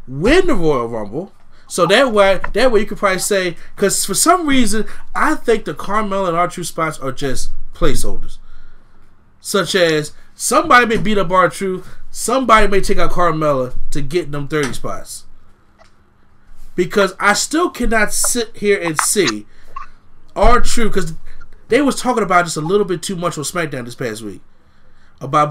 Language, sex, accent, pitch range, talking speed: English, male, American, 150-205 Hz, 165 wpm